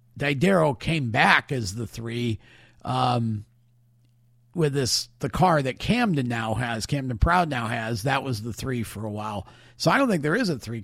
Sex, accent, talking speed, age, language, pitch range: male, American, 190 wpm, 50-69, English, 120-160 Hz